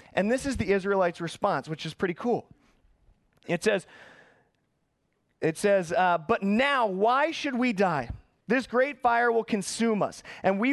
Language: English